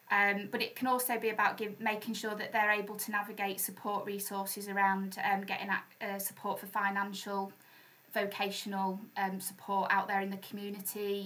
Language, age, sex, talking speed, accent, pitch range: English, 20-39, female, 165 wpm, British, 195-210 Hz